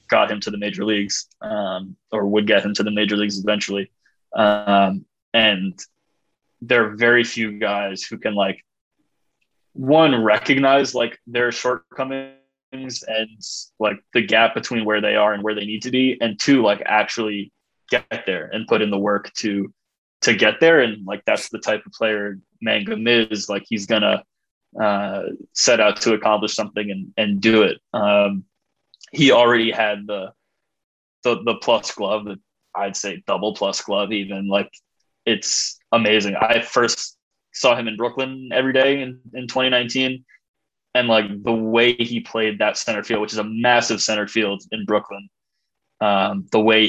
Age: 20-39